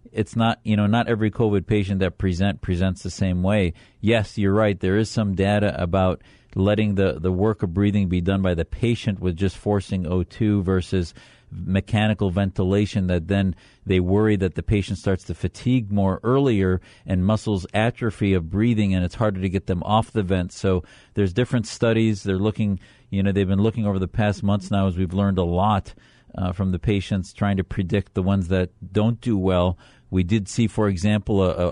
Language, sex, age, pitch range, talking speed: English, male, 40-59, 95-110 Hz, 200 wpm